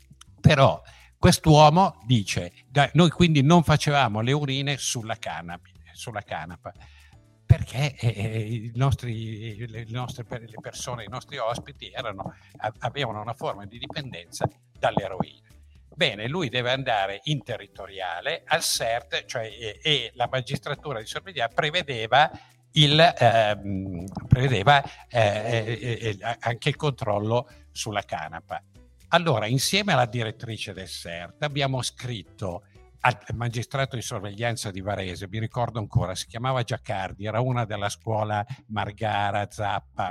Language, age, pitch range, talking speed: Italian, 60-79, 100-135 Hz, 120 wpm